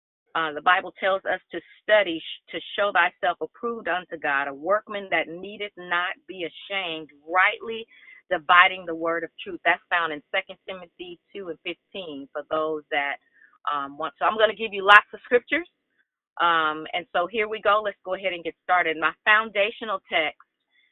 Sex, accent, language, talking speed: female, American, English, 180 wpm